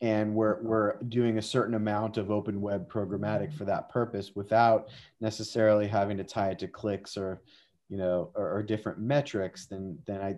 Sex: male